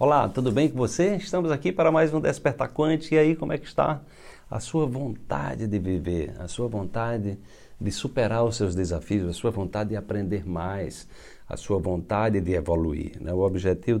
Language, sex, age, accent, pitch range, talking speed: Portuguese, male, 60-79, Brazilian, 95-130 Hz, 190 wpm